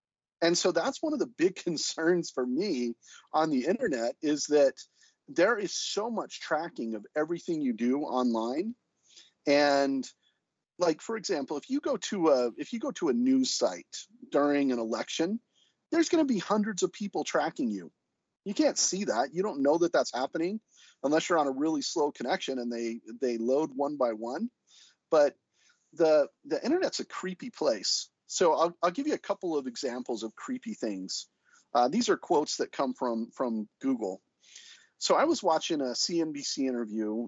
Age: 40-59